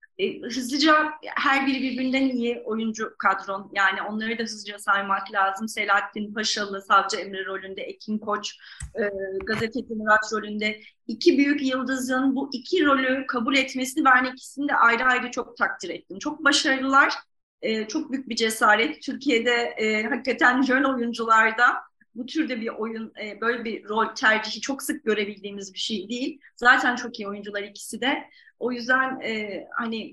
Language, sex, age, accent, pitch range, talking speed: Turkish, female, 30-49, native, 210-275 Hz, 150 wpm